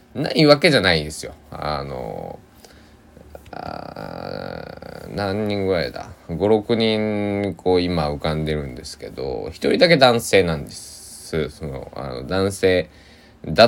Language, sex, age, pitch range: Japanese, male, 20-39, 75-95 Hz